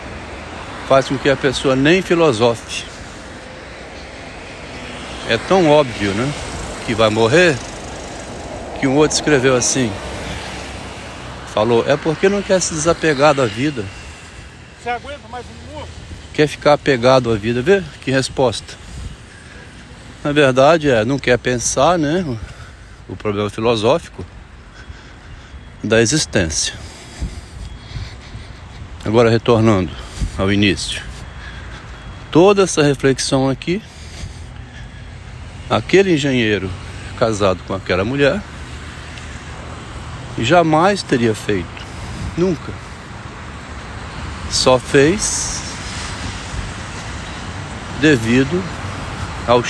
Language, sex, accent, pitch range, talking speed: Portuguese, male, Brazilian, 95-135 Hz, 90 wpm